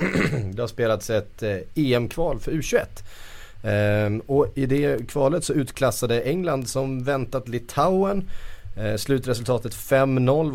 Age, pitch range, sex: 30-49, 110-150 Hz, male